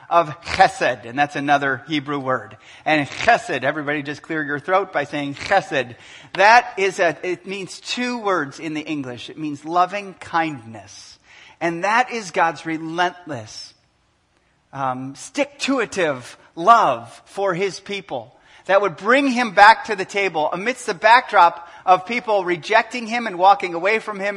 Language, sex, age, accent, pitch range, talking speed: English, male, 30-49, American, 145-200 Hz, 160 wpm